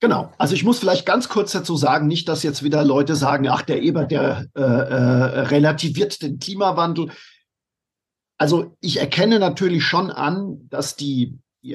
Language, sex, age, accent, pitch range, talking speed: German, male, 50-69, German, 140-165 Hz, 170 wpm